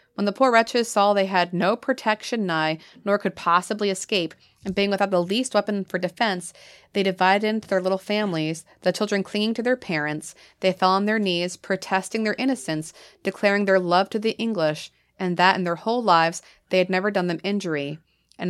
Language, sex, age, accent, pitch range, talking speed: English, female, 30-49, American, 165-205 Hz, 200 wpm